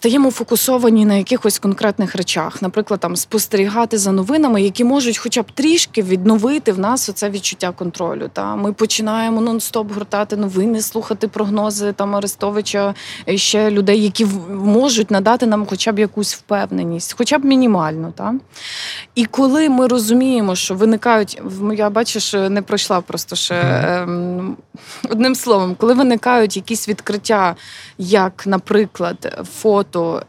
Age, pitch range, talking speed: 20-39, 195-235 Hz, 135 wpm